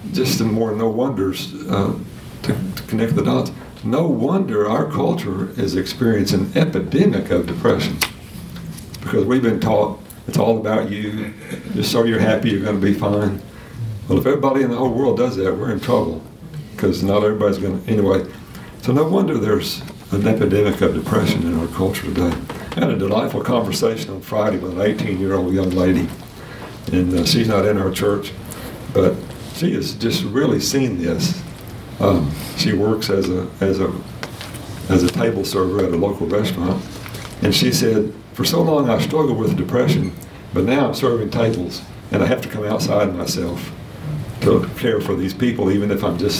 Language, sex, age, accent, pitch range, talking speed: English, male, 60-79, American, 95-115 Hz, 180 wpm